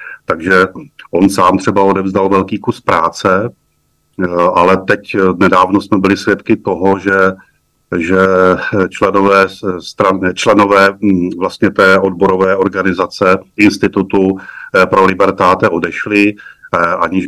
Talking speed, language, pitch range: 100 wpm, Czech, 95-105 Hz